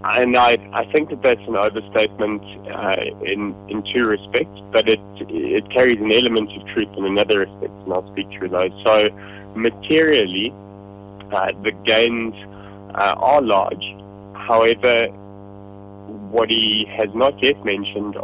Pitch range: 100-105 Hz